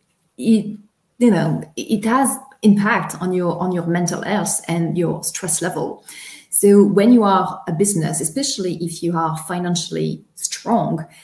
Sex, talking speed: female, 150 wpm